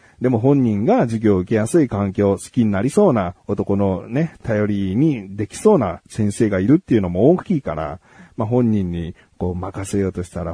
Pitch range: 95-135 Hz